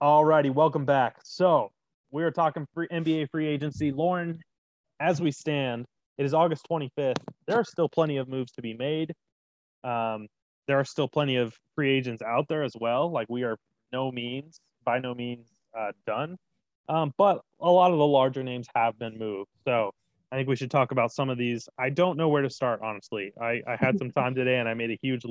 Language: English